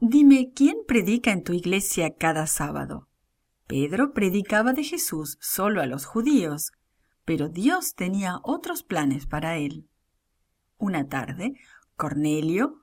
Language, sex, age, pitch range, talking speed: English, female, 40-59, 155-245 Hz, 120 wpm